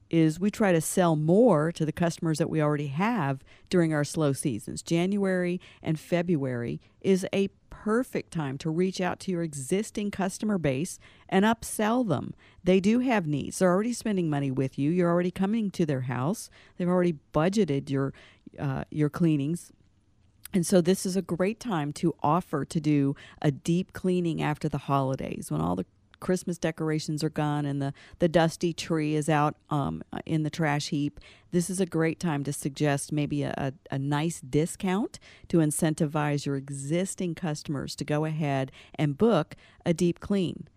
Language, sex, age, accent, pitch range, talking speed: English, female, 50-69, American, 145-185 Hz, 175 wpm